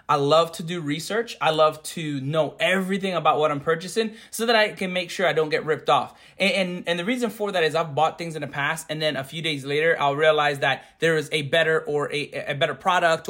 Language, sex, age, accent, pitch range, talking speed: English, male, 20-39, American, 145-185 Hz, 255 wpm